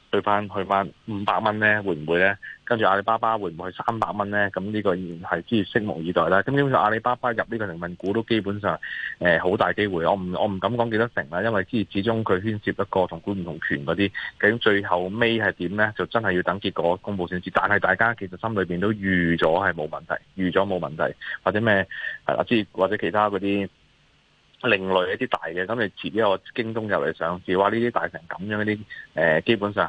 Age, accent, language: 30-49, native, Chinese